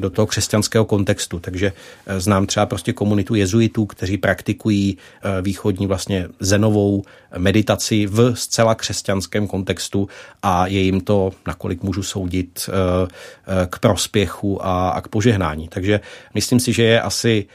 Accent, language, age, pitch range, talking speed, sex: native, Czech, 40-59, 95-110 Hz, 130 wpm, male